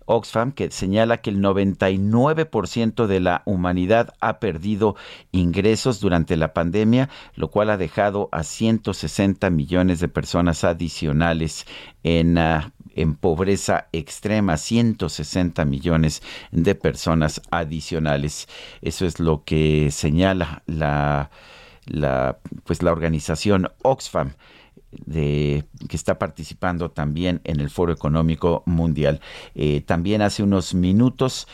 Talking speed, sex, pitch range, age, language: 110 wpm, male, 80-100 Hz, 50-69, Spanish